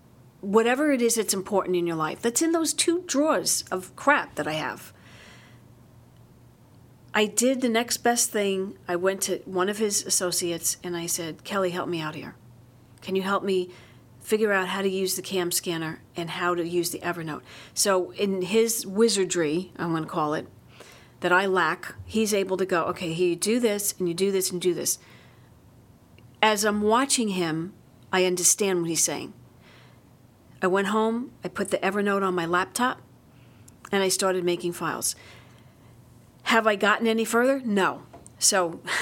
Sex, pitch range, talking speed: female, 170-220 Hz, 175 wpm